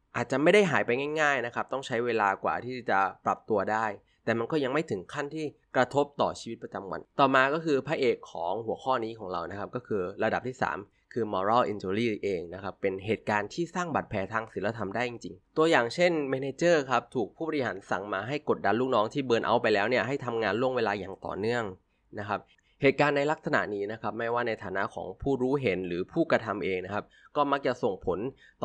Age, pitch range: 20-39, 105-145 Hz